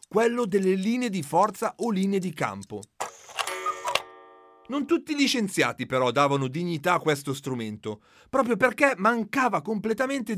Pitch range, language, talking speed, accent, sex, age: 150-230 Hz, Italian, 135 wpm, native, male, 40-59